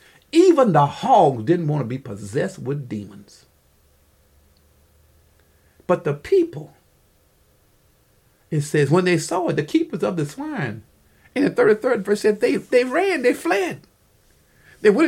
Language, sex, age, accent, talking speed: English, male, 50-69, American, 140 wpm